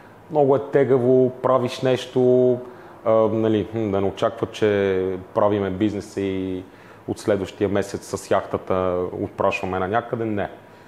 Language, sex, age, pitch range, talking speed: Bulgarian, male, 30-49, 100-130 Hz, 125 wpm